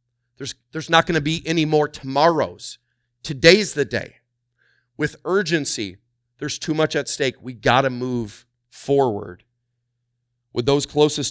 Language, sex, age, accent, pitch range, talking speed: English, male, 30-49, American, 120-140 Hz, 145 wpm